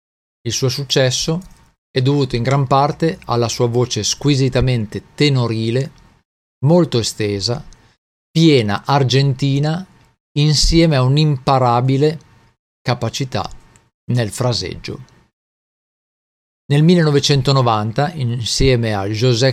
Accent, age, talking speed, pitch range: native, 50-69, 85 wpm, 115-145 Hz